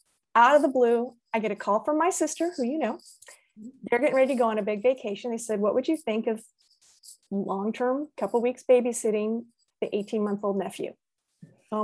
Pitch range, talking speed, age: 215-280 Hz, 195 wpm, 30-49